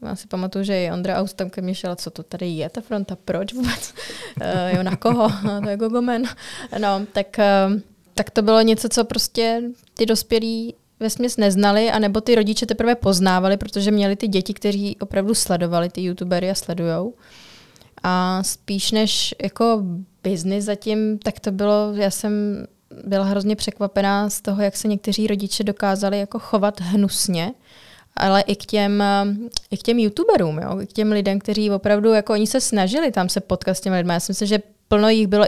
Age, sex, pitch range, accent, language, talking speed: 20-39, female, 190-215 Hz, native, Czech, 185 wpm